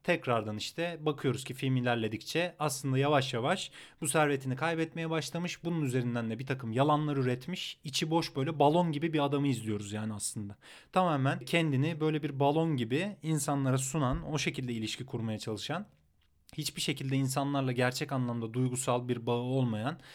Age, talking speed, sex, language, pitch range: 30-49, 155 wpm, male, Turkish, 120-150 Hz